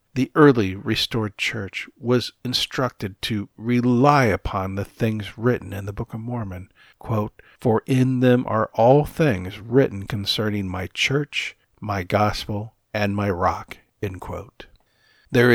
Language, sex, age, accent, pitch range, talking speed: English, male, 50-69, American, 100-130 Hz, 140 wpm